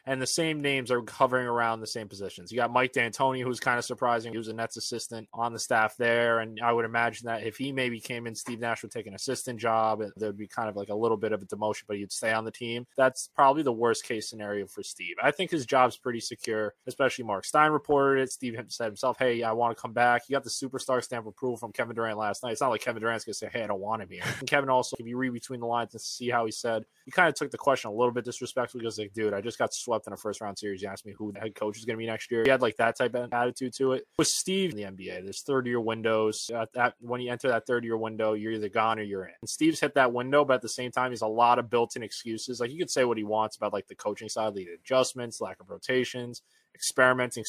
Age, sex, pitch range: 20-39, male, 110-125 Hz